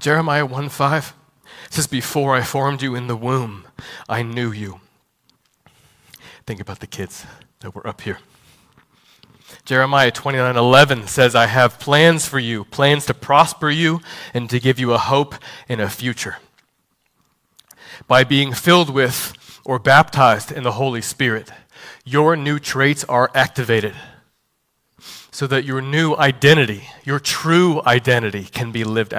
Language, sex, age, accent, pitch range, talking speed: English, male, 30-49, American, 115-140 Hz, 140 wpm